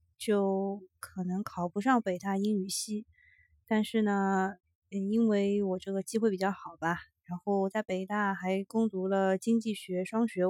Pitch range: 195-230 Hz